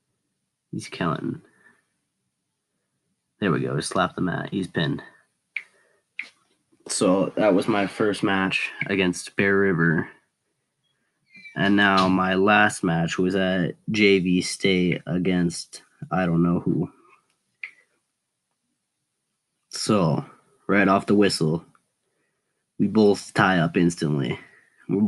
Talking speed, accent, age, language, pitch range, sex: 110 wpm, American, 20-39, English, 90-100 Hz, male